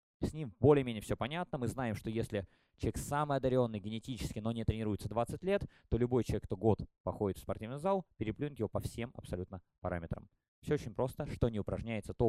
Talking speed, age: 195 wpm, 20-39